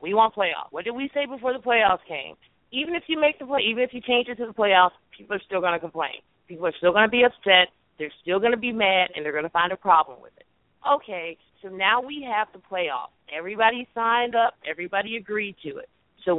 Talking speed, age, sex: 250 wpm, 40-59, female